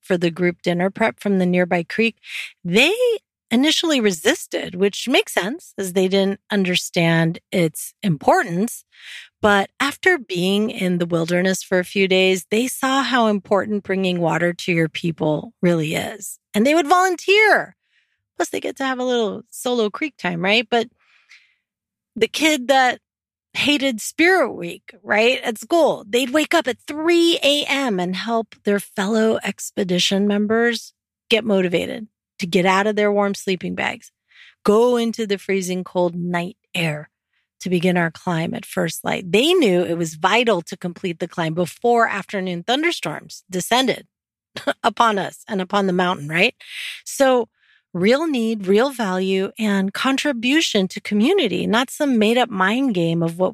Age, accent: 30-49, American